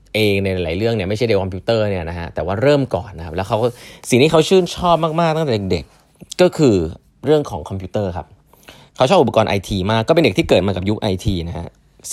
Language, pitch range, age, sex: Thai, 95-135 Hz, 20-39, male